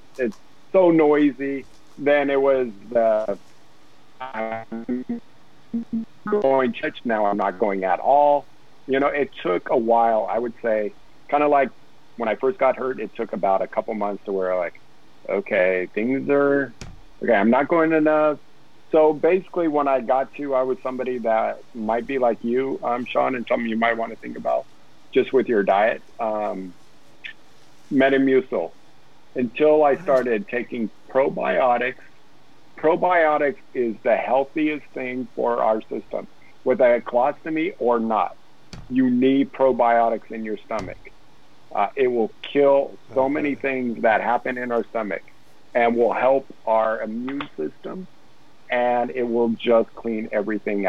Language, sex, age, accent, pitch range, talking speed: English, male, 50-69, American, 110-140 Hz, 155 wpm